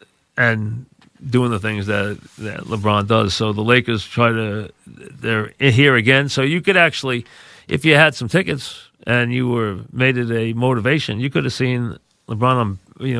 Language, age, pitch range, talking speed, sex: English, 40-59, 110-130 Hz, 175 wpm, male